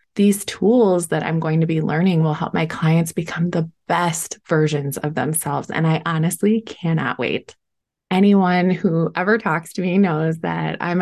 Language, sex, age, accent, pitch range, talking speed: English, female, 20-39, American, 160-220 Hz, 175 wpm